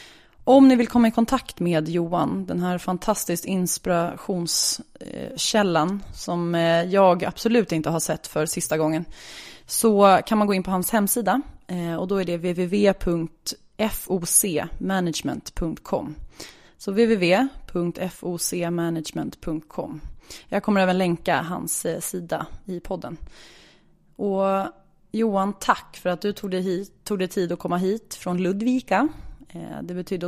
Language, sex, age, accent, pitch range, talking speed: English, female, 20-39, Swedish, 170-200 Hz, 120 wpm